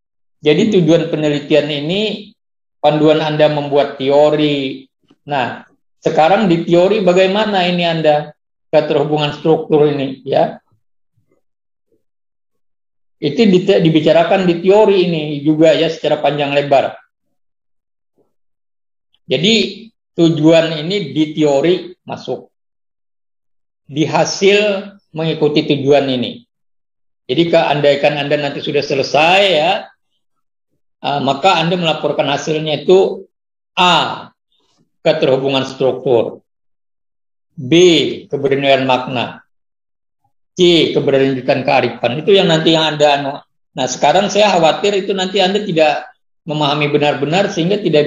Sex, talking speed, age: male, 95 wpm, 50-69